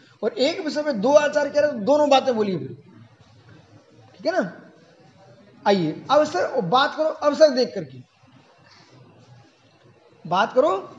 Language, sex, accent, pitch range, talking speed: Hindi, male, native, 210-295 Hz, 130 wpm